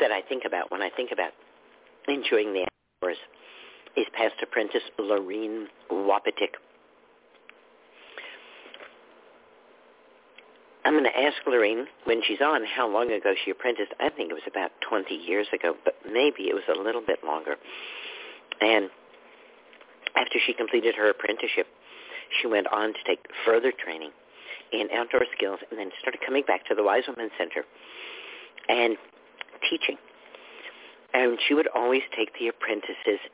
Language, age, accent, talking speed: English, 50-69, American, 145 wpm